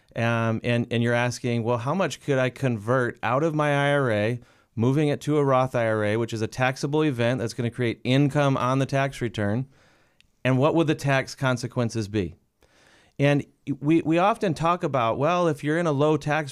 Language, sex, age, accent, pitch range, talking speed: English, male, 40-59, American, 115-145 Hz, 200 wpm